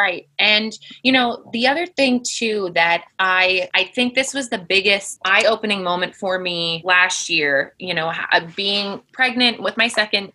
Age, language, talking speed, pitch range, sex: 20-39, English, 175 wpm, 180-220 Hz, female